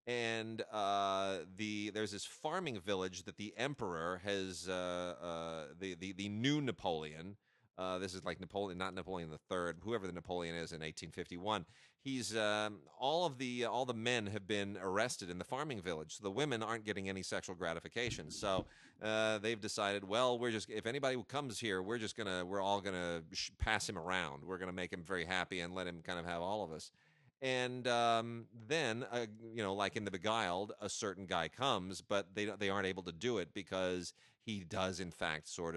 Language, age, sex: English, 30-49, male